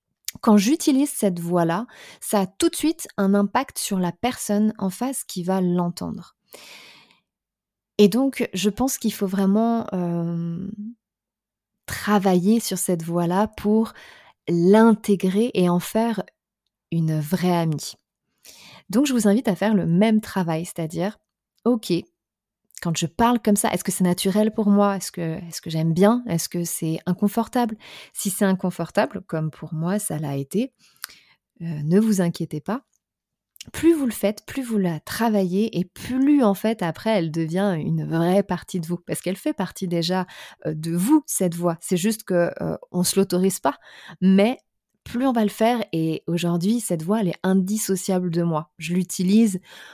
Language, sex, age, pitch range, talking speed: French, female, 20-39, 175-220 Hz, 165 wpm